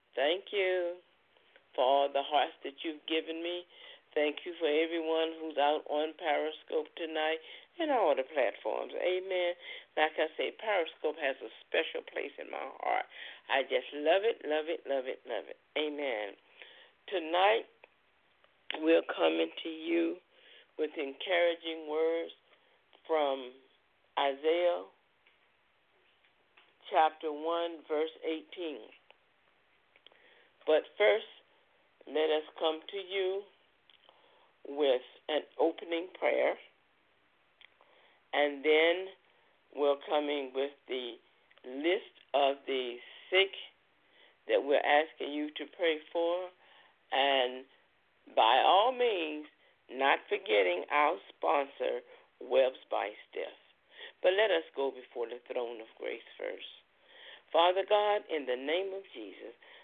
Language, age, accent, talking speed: English, 50-69, American, 115 wpm